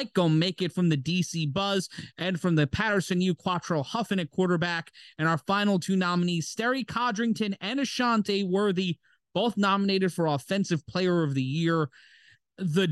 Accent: American